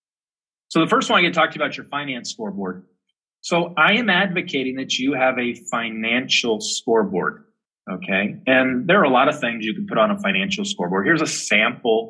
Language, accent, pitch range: English, American, 115-180 Hz